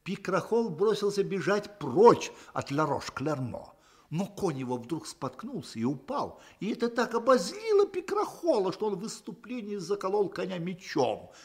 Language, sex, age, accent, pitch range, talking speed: Russian, male, 50-69, native, 145-230 Hz, 135 wpm